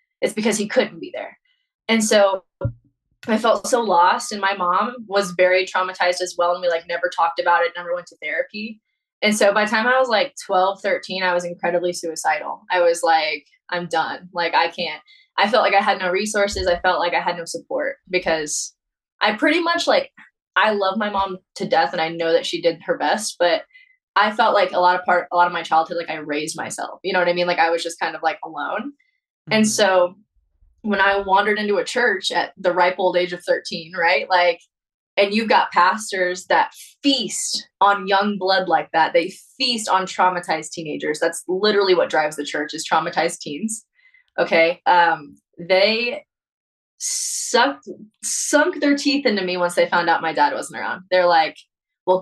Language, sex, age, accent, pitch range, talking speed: English, female, 20-39, American, 175-220 Hz, 205 wpm